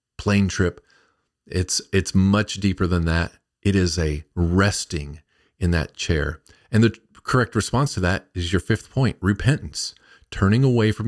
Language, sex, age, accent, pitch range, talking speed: English, male, 50-69, American, 85-115 Hz, 155 wpm